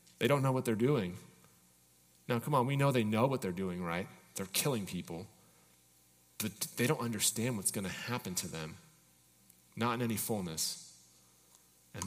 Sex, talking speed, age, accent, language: male, 175 wpm, 30-49, American, English